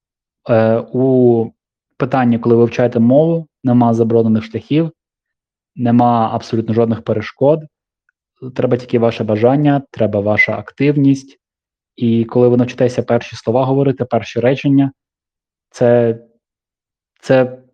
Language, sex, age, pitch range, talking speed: Ukrainian, male, 20-39, 110-130 Hz, 105 wpm